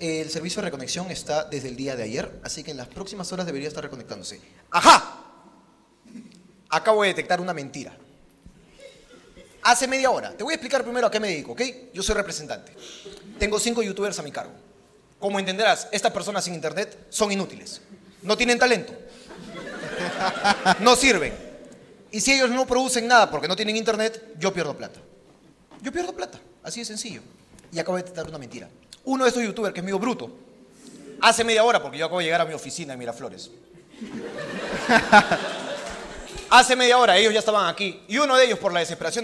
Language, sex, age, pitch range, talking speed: Spanish, male, 30-49, 175-240 Hz, 185 wpm